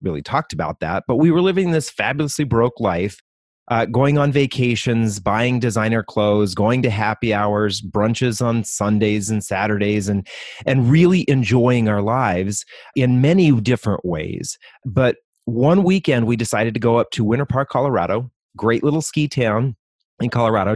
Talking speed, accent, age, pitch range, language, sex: 160 wpm, American, 30-49, 100-135 Hz, English, male